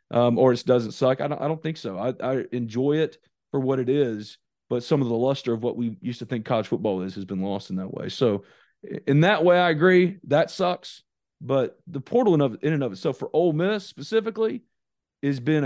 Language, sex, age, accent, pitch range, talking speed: English, male, 40-59, American, 115-150 Hz, 240 wpm